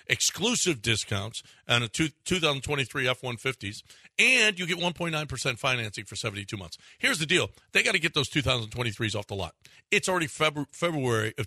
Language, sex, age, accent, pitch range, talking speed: English, male, 50-69, American, 120-170 Hz, 155 wpm